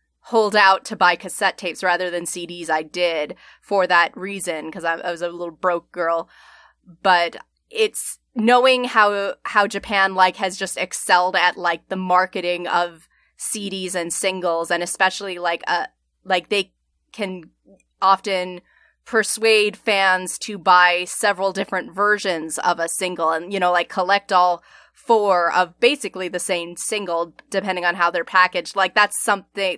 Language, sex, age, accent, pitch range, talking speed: English, female, 20-39, American, 175-205 Hz, 155 wpm